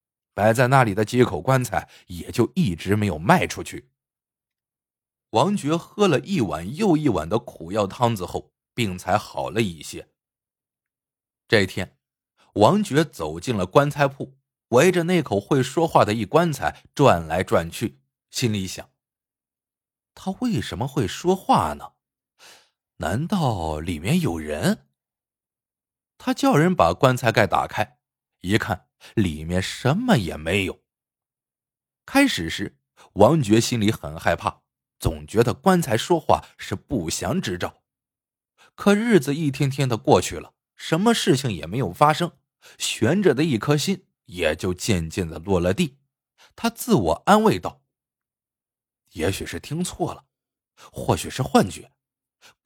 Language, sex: Chinese, male